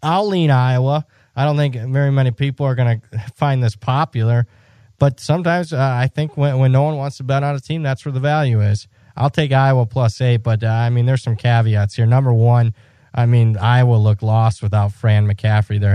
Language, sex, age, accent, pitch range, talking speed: English, male, 20-39, American, 110-130 Hz, 220 wpm